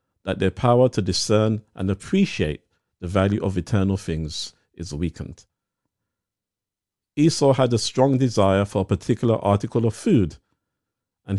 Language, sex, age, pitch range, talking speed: English, male, 50-69, 95-125 Hz, 135 wpm